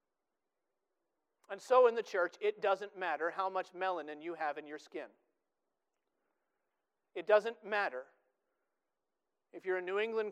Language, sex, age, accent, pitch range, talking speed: English, male, 40-59, American, 160-195 Hz, 140 wpm